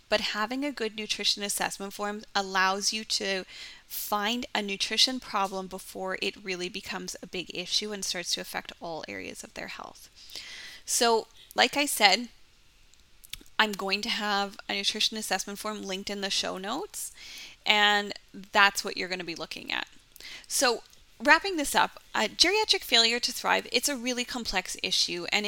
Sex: female